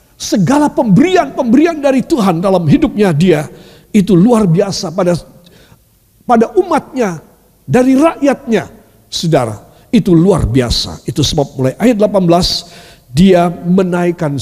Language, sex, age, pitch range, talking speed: Indonesian, male, 50-69, 175-275 Hz, 110 wpm